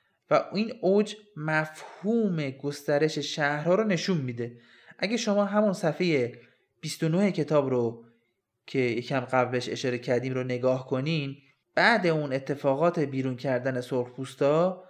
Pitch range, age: 140-185 Hz, 30-49